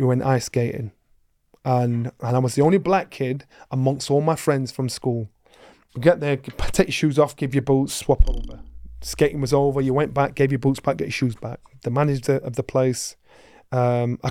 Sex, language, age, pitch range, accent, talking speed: male, English, 30-49, 130-175 Hz, British, 215 wpm